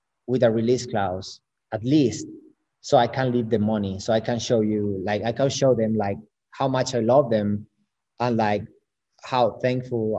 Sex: male